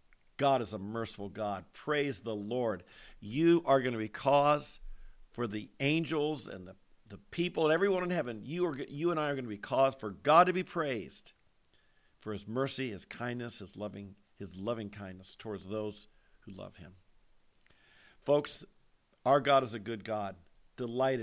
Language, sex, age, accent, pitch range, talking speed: English, male, 50-69, American, 110-145 Hz, 170 wpm